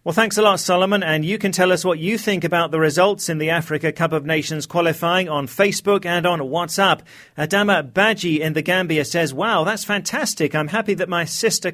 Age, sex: 40-59, male